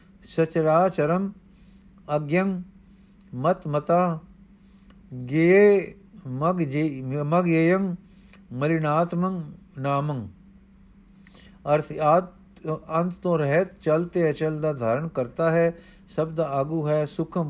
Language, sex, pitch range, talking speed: Punjabi, male, 155-190 Hz, 80 wpm